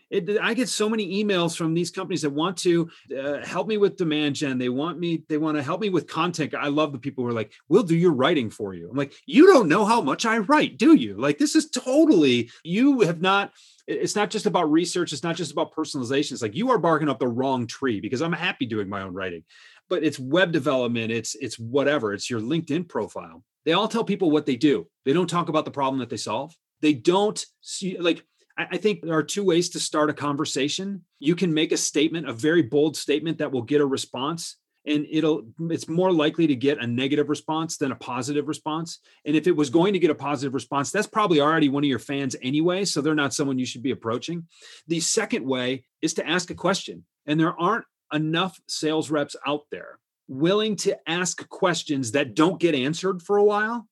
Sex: male